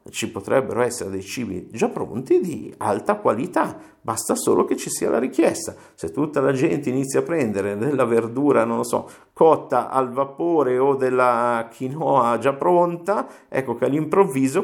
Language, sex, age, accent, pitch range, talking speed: Italian, male, 50-69, native, 110-150 Hz, 165 wpm